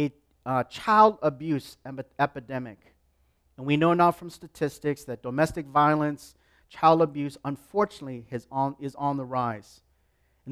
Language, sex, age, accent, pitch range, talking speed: English, male, 40-59, American, 135-180 Hz, 120 wpm